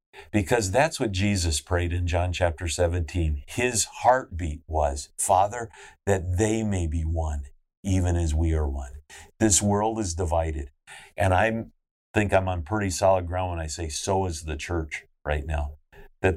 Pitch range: 80-95 Hz